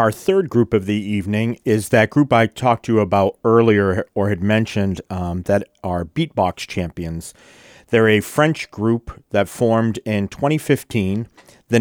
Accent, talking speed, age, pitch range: American, 165 wpm, 40-59, 95-115 Hz